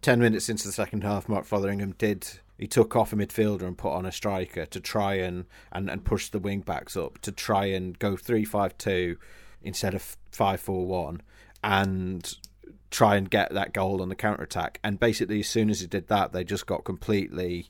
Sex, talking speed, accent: male, 210 wpm, British